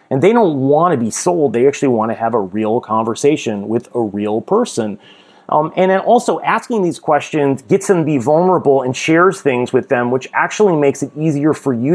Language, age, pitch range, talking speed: English, 30-49, 130-170 Hz, 215 wpm